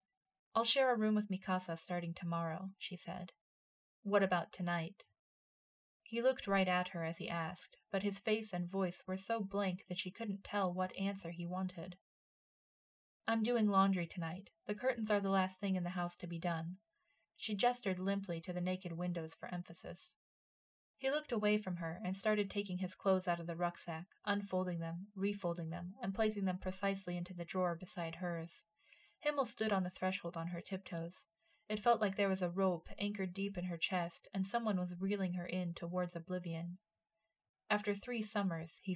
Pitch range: 175-205 Hz